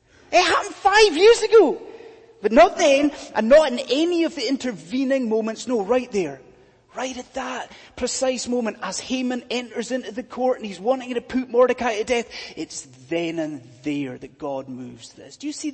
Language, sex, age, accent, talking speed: English, male, 30-49, British, 185 wpm